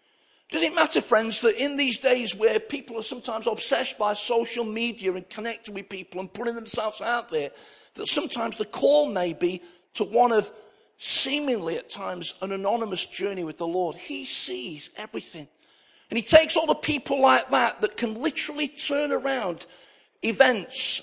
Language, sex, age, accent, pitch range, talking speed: English, male, 50-69, British, 185-255 Hz, 170 wpm